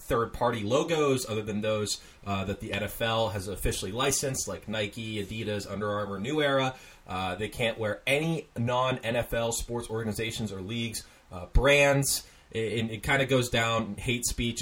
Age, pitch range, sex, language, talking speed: 20-39, 100-125 Hz, male, English, 165 wpm